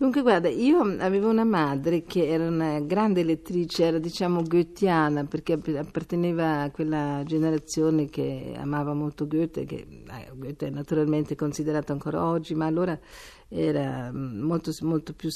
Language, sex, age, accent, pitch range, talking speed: Italian, female, 50-69, native, 150-185 Hz, 150 wpm